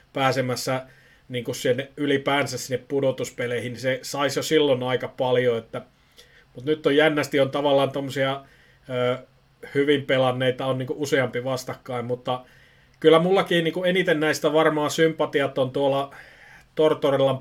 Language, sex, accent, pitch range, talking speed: Finnish, male, native, 130-150 Hz, 115 wpm